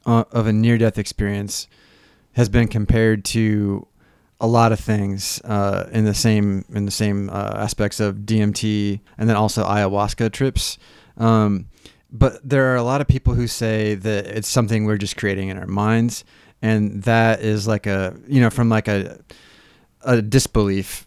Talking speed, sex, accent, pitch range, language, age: 175 wpm, male, American, 100-115 Hz, English, 30-49